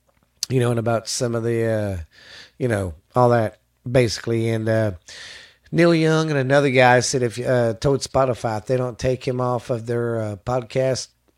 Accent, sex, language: American, male, English